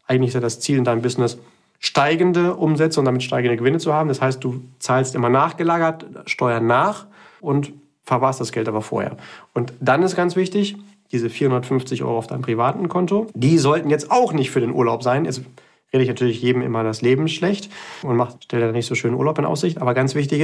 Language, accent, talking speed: German, German, 215 wpm